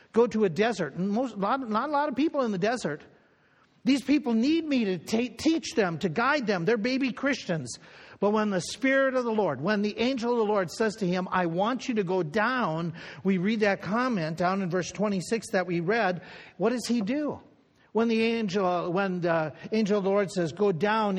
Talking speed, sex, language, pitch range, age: 205 wpm, male, English, 180-235 Hz, 50-69